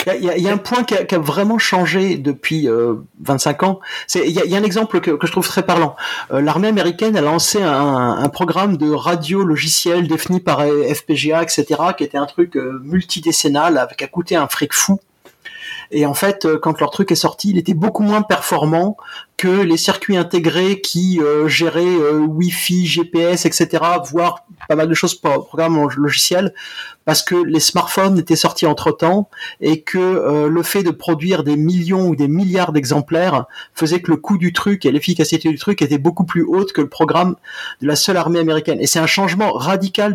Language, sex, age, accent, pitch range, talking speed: French, male, 30-49, French, 150-190 Hz, 210 wpm